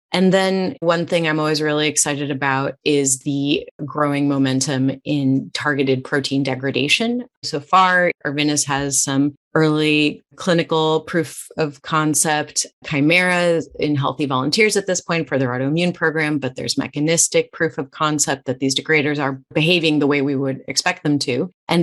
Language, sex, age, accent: English, female, 30-49, American